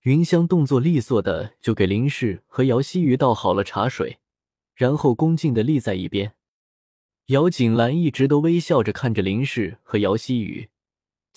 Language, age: Chinese, 20-39